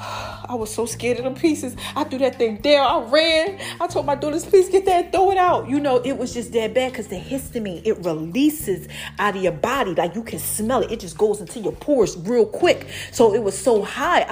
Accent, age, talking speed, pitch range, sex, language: American, 30-49, 245 wpm, 185-280 Hz, female, English